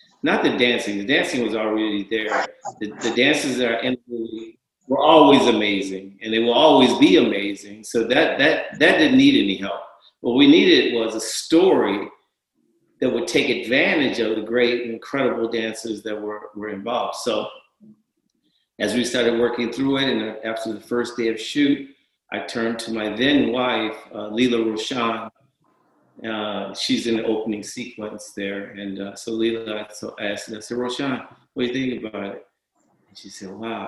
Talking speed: 175 wpm